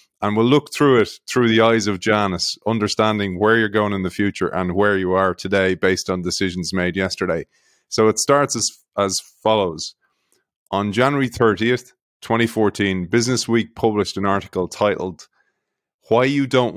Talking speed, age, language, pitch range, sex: 160 wpm, 30-49, English, 95-115 Hz, male